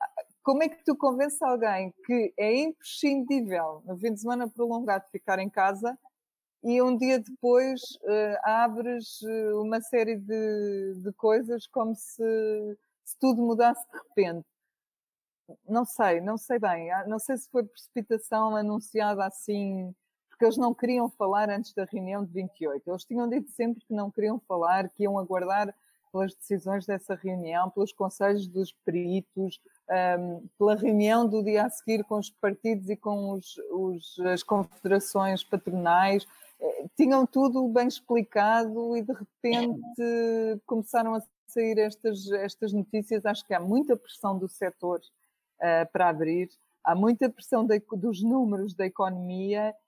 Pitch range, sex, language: 190-235 Hz, female, Portuguese